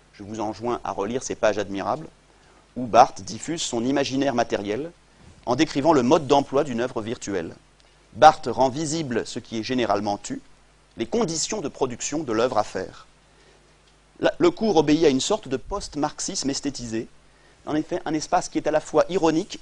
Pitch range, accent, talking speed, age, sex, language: 120-155 Hz, French, 175 wpm, 30-49, male, French